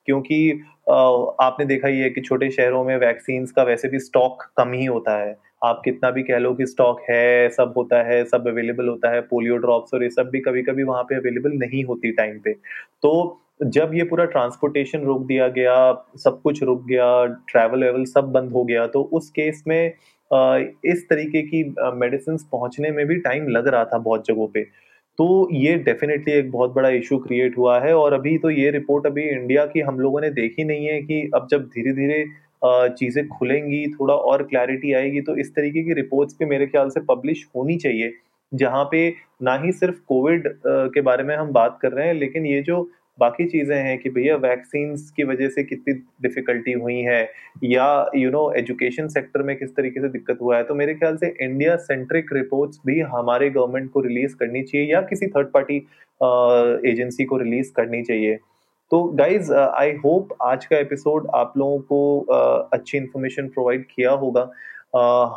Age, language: 20-39, Hindi